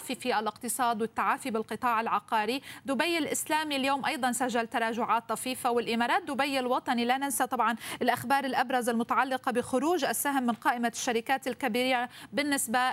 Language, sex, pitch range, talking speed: Arabic, female, 235-280 Hz, 130 wpm